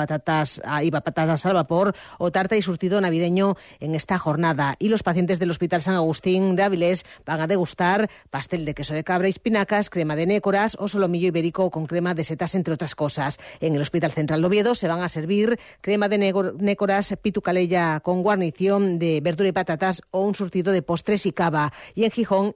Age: 40-59